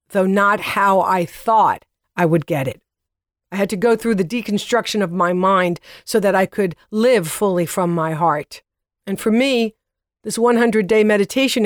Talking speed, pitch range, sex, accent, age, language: 175 wpm, 170-225 Hz, female, American, 50-69, English